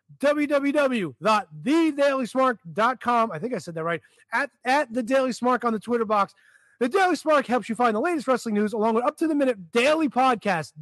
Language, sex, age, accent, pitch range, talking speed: English, male, 30-49, American, 200-290 Hz, 190 wpm